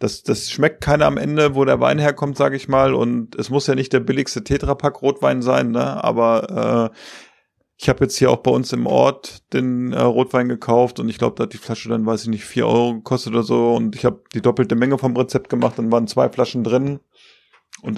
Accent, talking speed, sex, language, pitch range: German, 235 wpm, male, German, 120-140 Hz